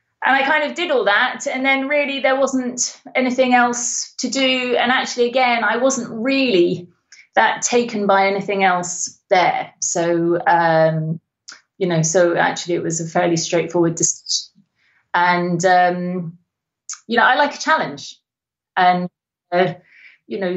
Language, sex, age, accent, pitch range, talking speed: English, female, 30-49, British, 170-235 Hz, 150 wpm